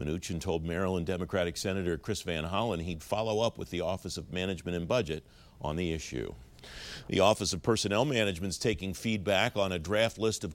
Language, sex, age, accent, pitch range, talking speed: English, male, 50-69, American, 85-110 Hz, 195 wpm